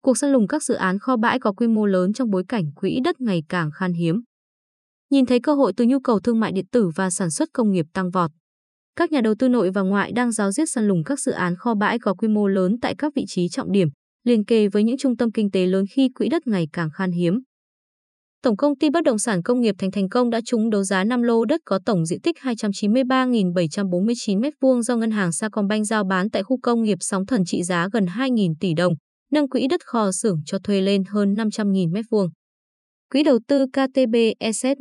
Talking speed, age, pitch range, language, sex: 240 wpm, 20-39, 190-250 Hz, Vietnamese, female